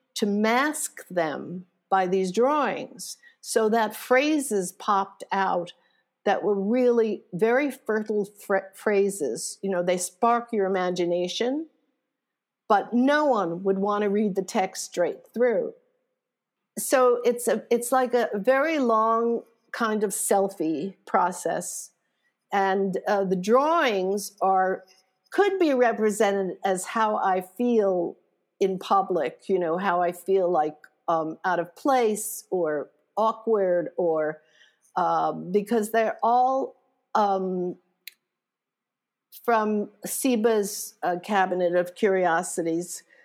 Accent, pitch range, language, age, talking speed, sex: American, 185-245 Hz, English, 50-69, 120 wpm, female